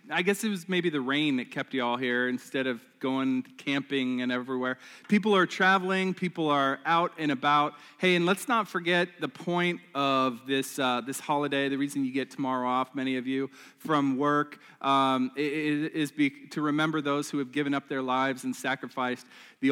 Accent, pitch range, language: American, 130-155 Hz, English